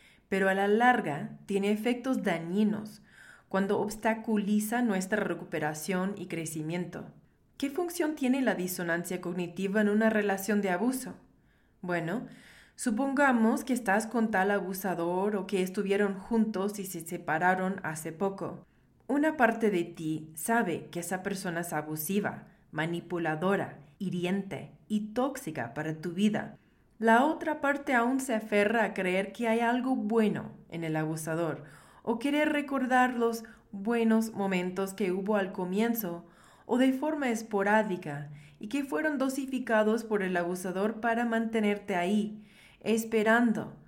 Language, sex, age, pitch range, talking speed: Spanish, female, 30-49, 180-225 Hz, 135 wpm